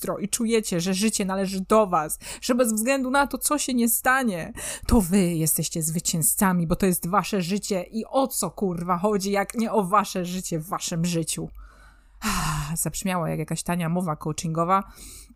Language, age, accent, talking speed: Polish, 20-39, native, 175 wpm